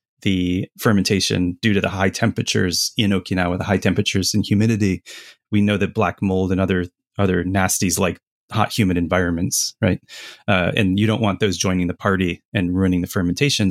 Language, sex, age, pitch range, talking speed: English, male, 30-49, 95-110 Hz, 180 wpm